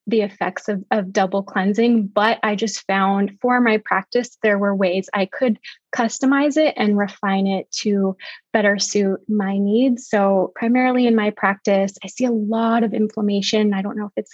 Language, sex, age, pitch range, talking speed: English, female, 20-39, 205-245 Hz, 185 wpm